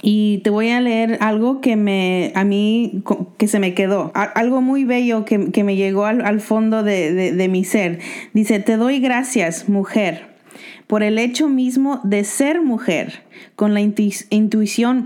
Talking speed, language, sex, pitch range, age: 175 wpm, Spanish, female, 200-255 Hz, 30-49